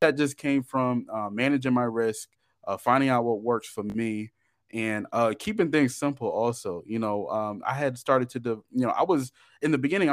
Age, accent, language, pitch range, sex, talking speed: 20-39, American, English, 105-125 Hz, male, 215 wpm